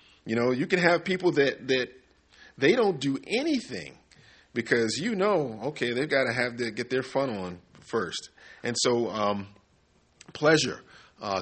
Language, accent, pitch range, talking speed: English, American, 105-135 Hz, 165 wpm